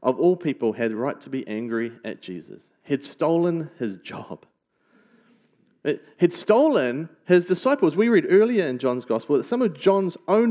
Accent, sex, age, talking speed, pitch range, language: Australian, male, 40-59, 170 wpm, 120-165 Hz, English